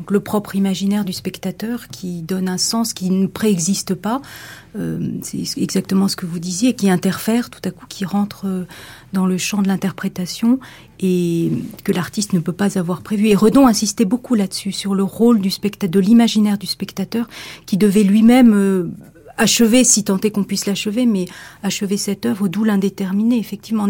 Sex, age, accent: female, 40-59, French